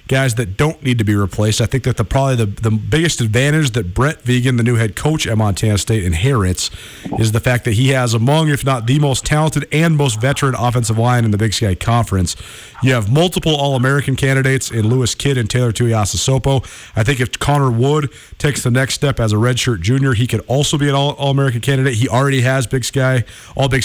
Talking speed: 215 wpm